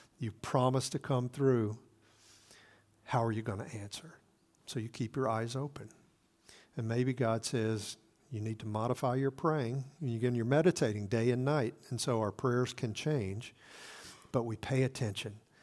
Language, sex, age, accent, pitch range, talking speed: English, male, 50-69, American, 110-130 Hz, 175 wpm